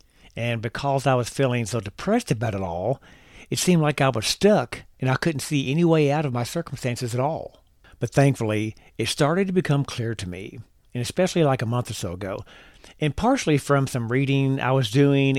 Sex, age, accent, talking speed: male, 50-69, American, 205 wpm